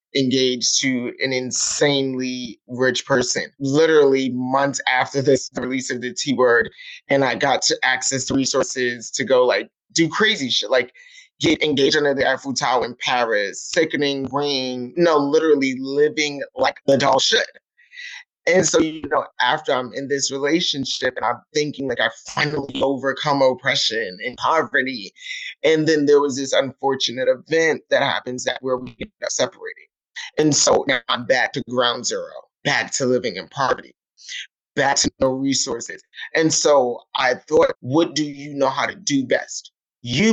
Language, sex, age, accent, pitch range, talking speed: English, male, 30-49, American, 135-220 Hz, 165 wpm